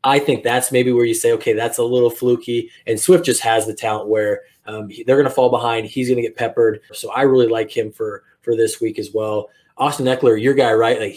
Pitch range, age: 110-140 Hz, 20-39